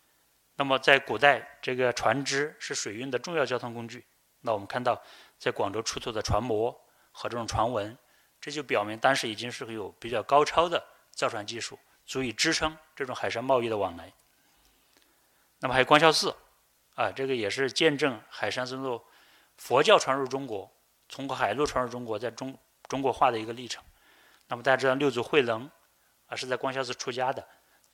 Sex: male